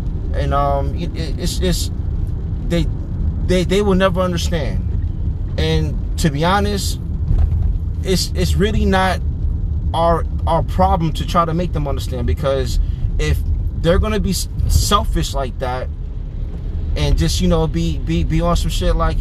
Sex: male